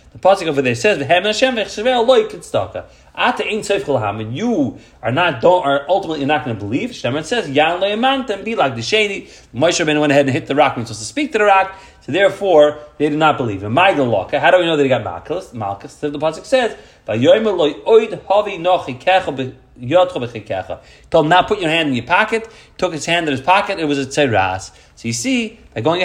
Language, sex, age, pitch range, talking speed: English, male, 30-49, 135-205 Hz, 195 wpm